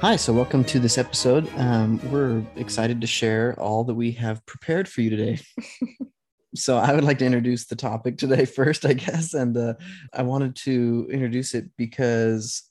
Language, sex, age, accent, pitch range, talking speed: English, male, 20-39, American, 105-125 Hz, 185 wpm